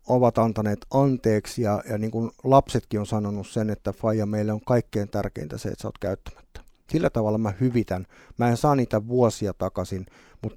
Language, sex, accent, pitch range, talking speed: Finnish, male, native, 100-115 Hz, 180 wpm